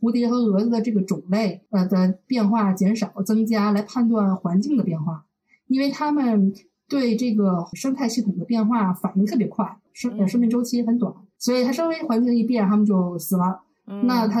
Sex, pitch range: female, 185-235 Hz